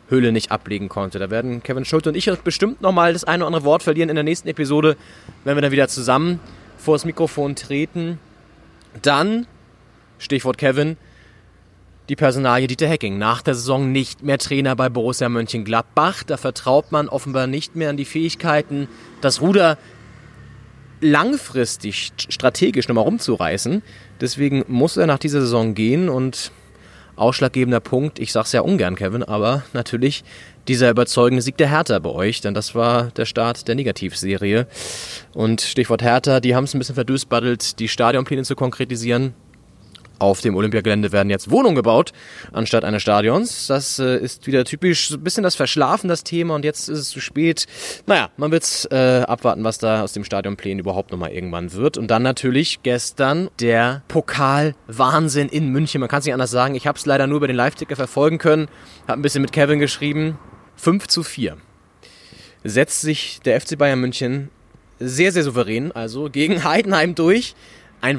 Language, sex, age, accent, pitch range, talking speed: German, male, 30-49, German, 115-150 Hz, 170 wpm